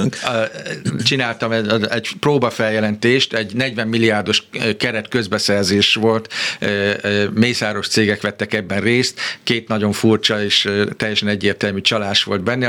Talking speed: 110 wpm